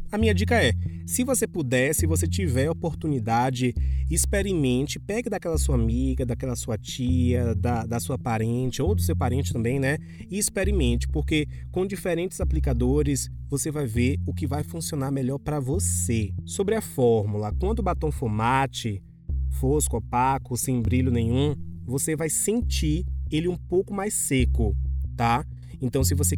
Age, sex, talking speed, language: 20-39, male, 160 wpm, Portuguese